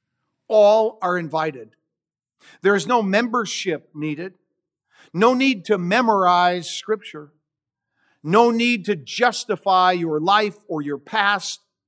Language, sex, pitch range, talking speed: English, male, 165-225 Hz, 110 wpm